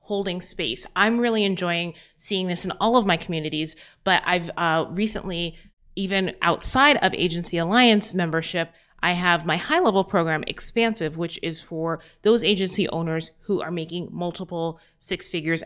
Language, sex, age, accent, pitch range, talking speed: English, female, 30-49, American, 165-210 Hz, 155 wpm